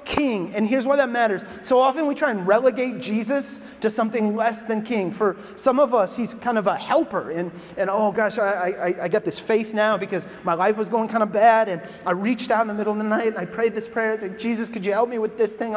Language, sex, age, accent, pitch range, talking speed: English, male, 30-49, American, 190-245 Hz, 270 wpm